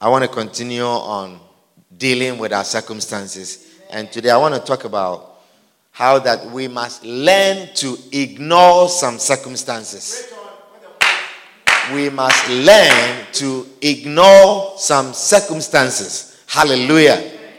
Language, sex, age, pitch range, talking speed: English, male, 50-69, 135-200 Hz, 115 wpm